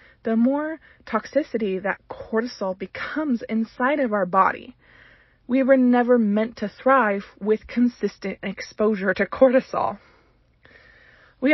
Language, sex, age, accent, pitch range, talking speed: English, female, 20-39, American, 210-270 Hz, 115 wpm